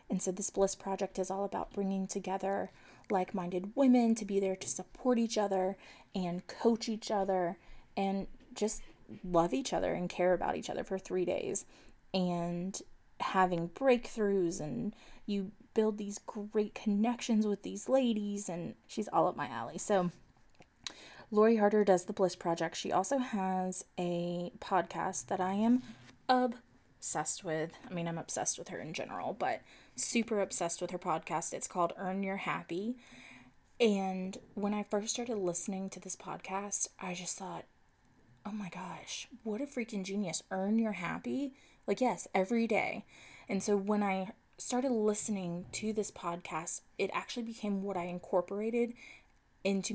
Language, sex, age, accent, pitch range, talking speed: English, female, 20-39, American, 180-215 Hz, 160 wpm